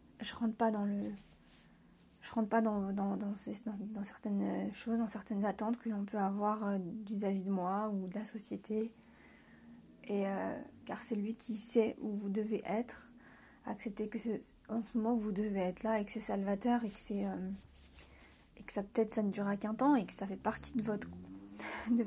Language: French